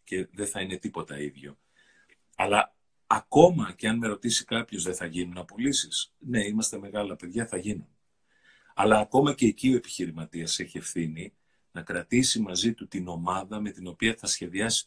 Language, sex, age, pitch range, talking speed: Greek, male, 40-59, 90-125 Hz, 170 wpm